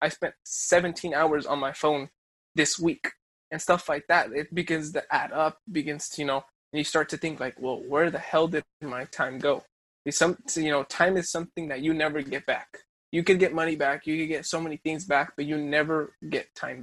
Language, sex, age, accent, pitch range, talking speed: English, male, 20-39, American, 135-165 Hz, 230 wpm